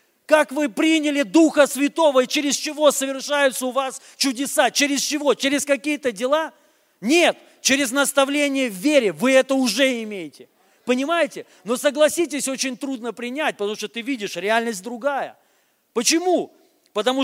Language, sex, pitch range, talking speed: Russian, male, 240-290 Hz, 140 wpm